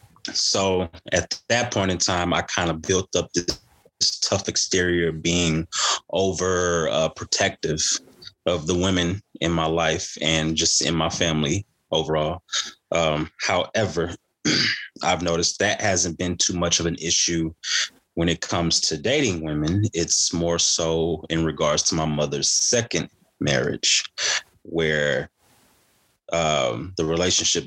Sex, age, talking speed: male, 20-39, 130 wpm